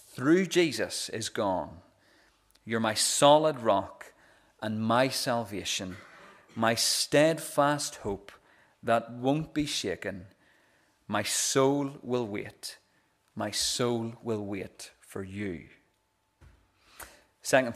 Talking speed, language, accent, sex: 100 wpm, English, British, male